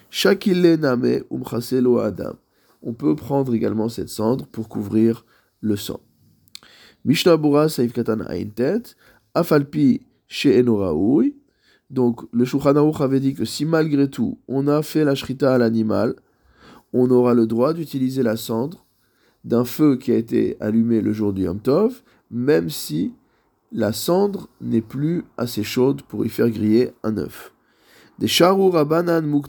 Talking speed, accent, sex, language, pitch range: 135 wpm, French, male, French, 110-140 Hz